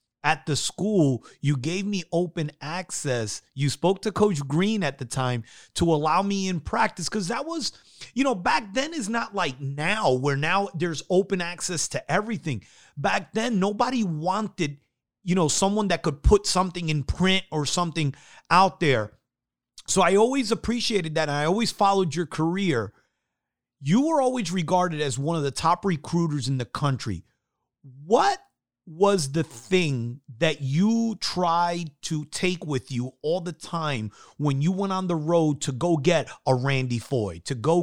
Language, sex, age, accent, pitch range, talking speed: English, male, 30-49, American, 145-195 Hz, 170 wpm